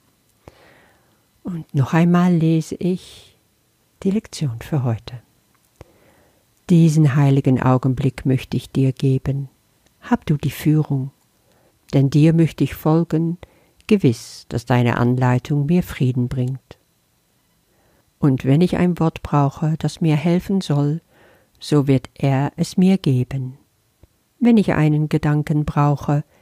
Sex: female